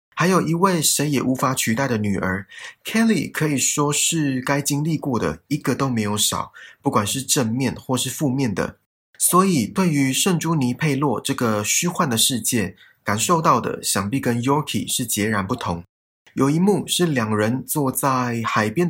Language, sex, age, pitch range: Chinese, male, 20-39, 110-155 Hz